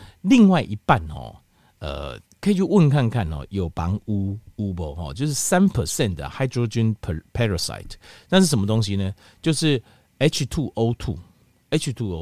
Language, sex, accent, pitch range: Chinese, male, native, 95-155 Hz